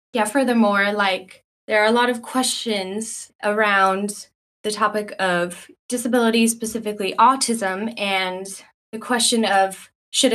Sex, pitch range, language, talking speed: female, 185-230 Hz, English, 120 wpm